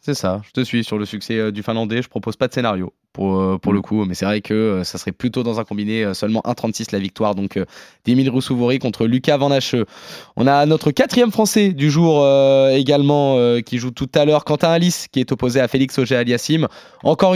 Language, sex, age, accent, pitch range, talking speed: French, male, 20-39, French, 125-160 Hz, 235 wpm